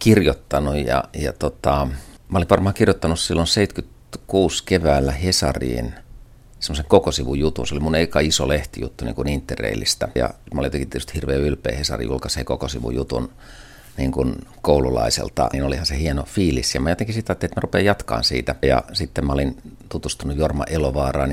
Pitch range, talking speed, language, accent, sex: 65-80 Hz, 155 wpm, Finnish, native, male